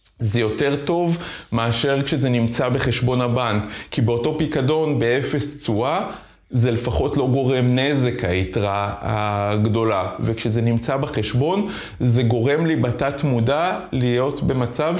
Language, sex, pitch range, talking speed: Hebrew, male, 115-145 Hz, 120 wpm